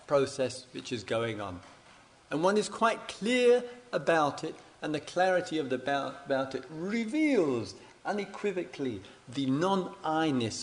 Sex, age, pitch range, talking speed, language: male, 50-69, 115-165 Hz, 135 wpm, English